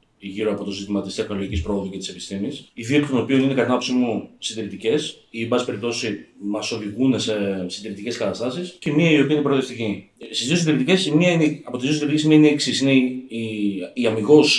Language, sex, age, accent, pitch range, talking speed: Greek, male, 30-49, native, 110-150 Hz, 190 wpm